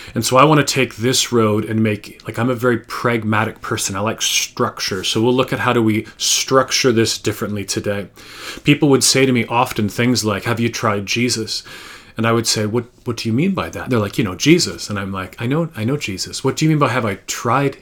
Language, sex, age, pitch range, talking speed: English, male, 30-49, 110-130 Hz, 250 wpm